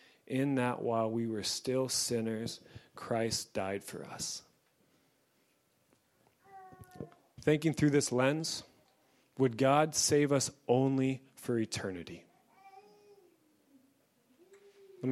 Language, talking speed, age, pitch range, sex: English, 90 wpm, 30-49, 120-155 Hz, male